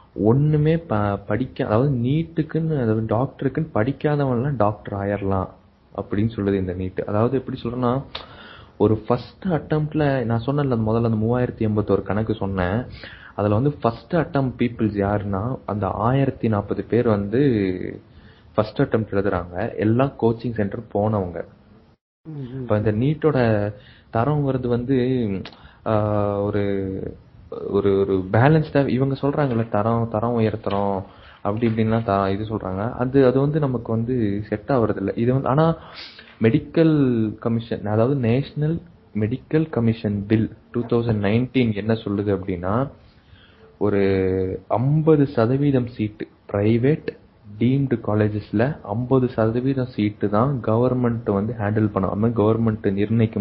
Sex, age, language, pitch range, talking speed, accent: male, 20-39, Tamil, 105-130 Hz, 75 wpm, native